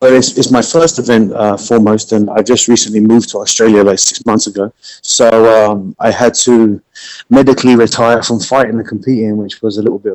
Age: 30-49